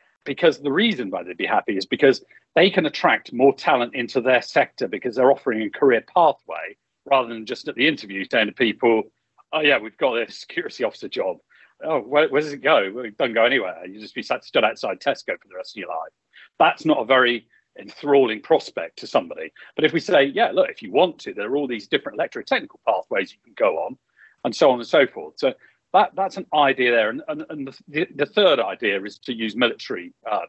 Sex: male